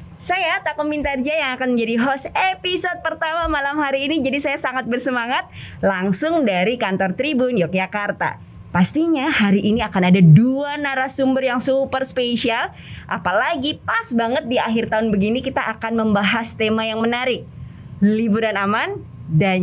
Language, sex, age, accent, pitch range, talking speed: Indonesian, female, 20-39, native, 195-270 Hz, 145 wpm